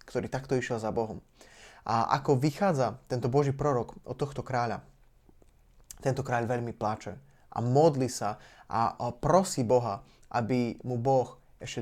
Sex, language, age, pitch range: male, Slovak, 20-39, 120-140 Hz